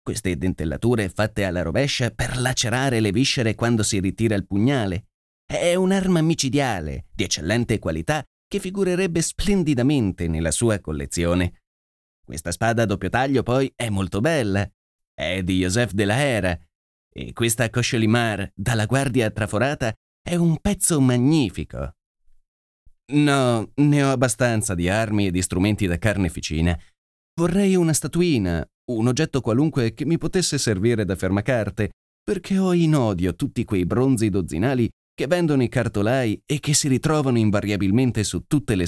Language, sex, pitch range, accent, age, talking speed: Italian, male, 95-135 Hz, native, 30-49, 145 wpm